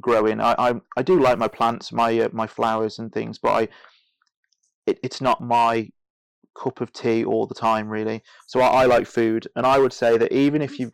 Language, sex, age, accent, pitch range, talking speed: English, male, 30-49, British, 110-120 Hz, 215 wpm